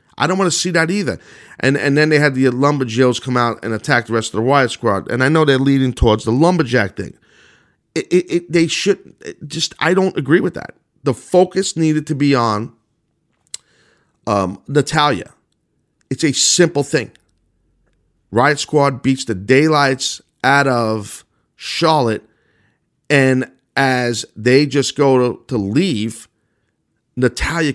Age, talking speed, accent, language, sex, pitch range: 40-59, 160 wpm, American, English, male, 115-155 Hz